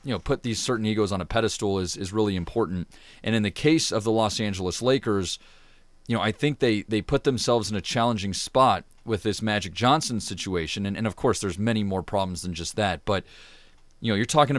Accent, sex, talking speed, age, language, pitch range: American, male, 225 wpm, 30-49, English, 100-120 Hz